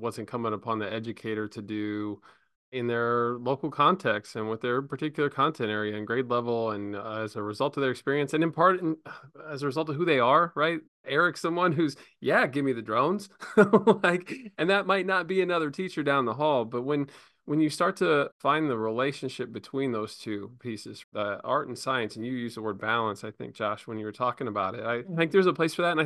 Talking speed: 230 wpm